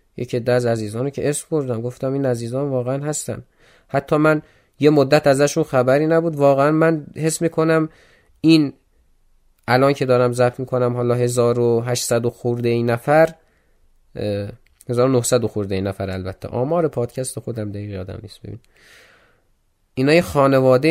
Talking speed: 145 wpm